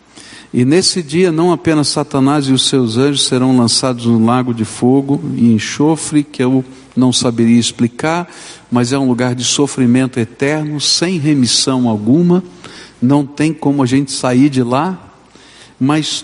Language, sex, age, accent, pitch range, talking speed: Portuguese, male, 60-79, Brazilian, 130-185 Hz, 155 wpm